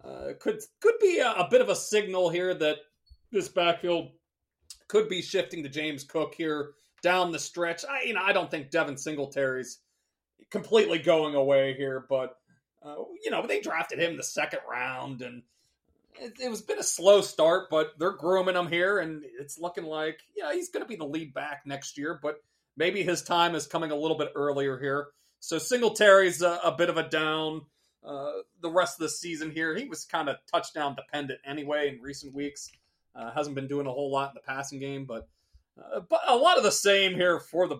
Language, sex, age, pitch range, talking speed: English, male, 30-49, 135-170 Hz, 210 wpm